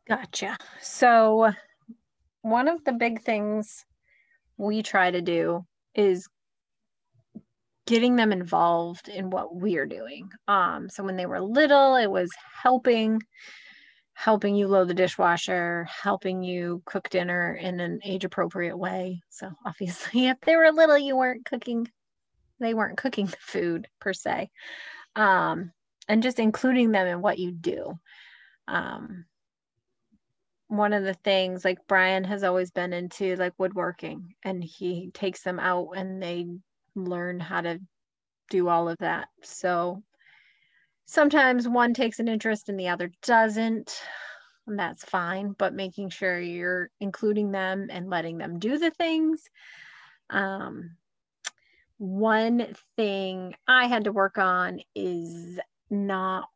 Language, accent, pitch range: English, American, 180-235 Hz